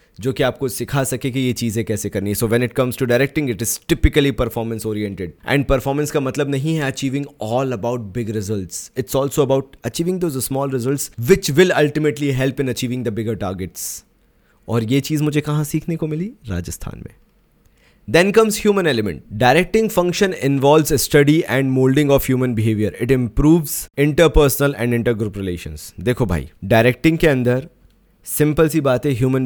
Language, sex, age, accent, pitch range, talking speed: Hindi, male, 20-39, native, 115-145 Hz, 180 wpm